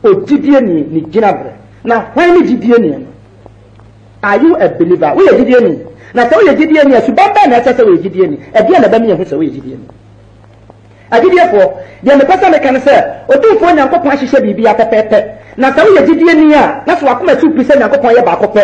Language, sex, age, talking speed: English, male, 40-59, 50 wpm